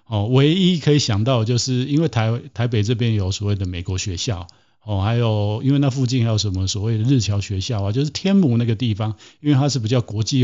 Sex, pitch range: male, 100-125 Hz